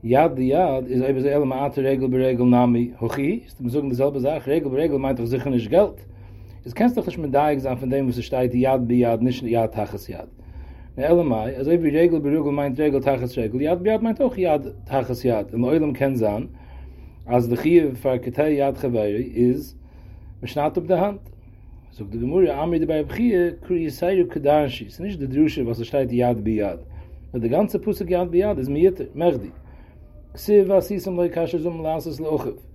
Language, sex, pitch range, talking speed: English, male, 115-155 Hz, 135 wpm